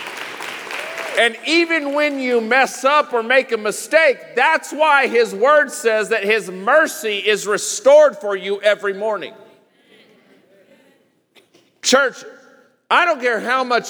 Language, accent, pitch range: English, American, 205-280 Hz